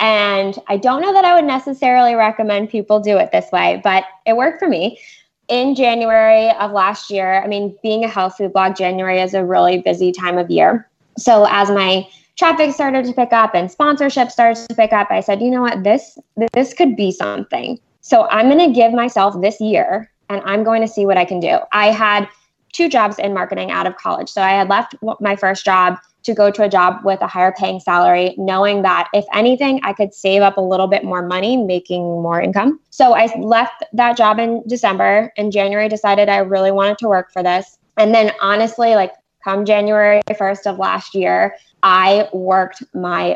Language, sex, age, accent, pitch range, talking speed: English, female, 20-39, American, 185-225 Hz, 210 wpm